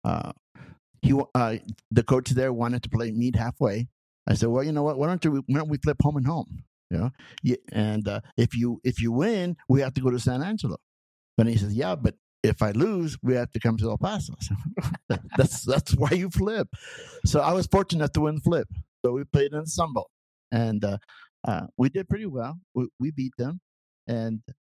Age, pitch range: 50-69, 105-135 Hz